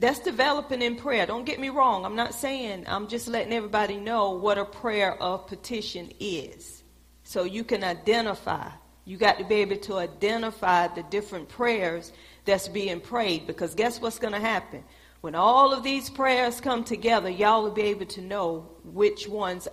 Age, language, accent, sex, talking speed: 40-59, English, American, female, 185 wpm